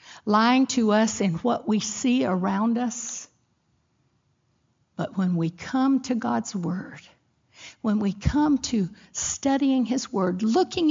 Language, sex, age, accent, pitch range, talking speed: English, female, 60-79, American, 180-255 Hz, 130 wpm